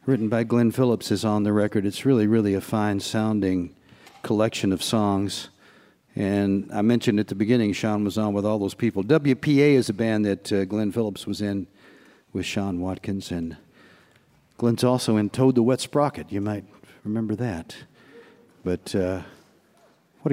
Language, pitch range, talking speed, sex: English, 105-140 Hz, 170 wpm, male